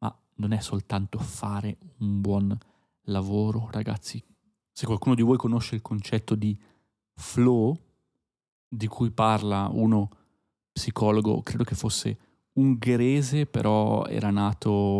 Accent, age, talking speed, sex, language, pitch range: native, 30-49, 115 wpm, male, Italian, 100-115 Hz